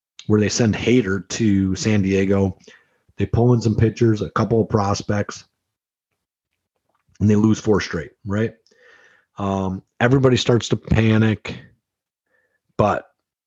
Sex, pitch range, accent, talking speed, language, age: male, 100-125 Hz, American, 125 wpm, English, 30-49